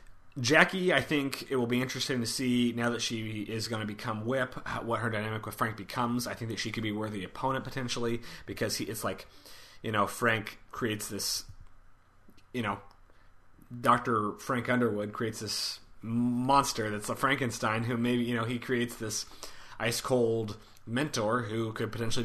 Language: English